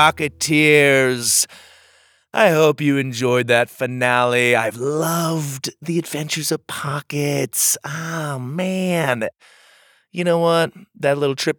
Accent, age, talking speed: American, 30-49, 110 wpm